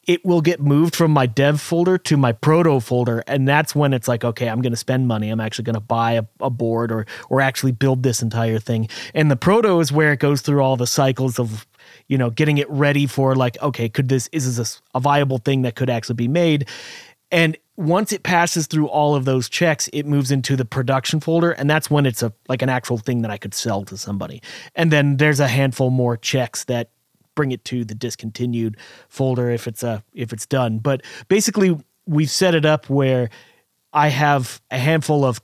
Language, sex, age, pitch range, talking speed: English, male, 30-49, 120-155 Hz, 225 wpm